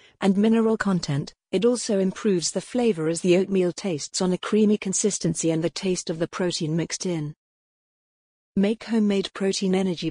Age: 40-59